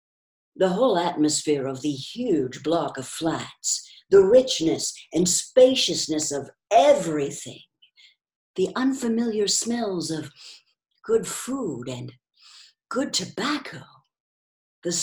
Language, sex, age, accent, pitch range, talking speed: English, female, 60-79, American, 150-235 Hz, 100 wpm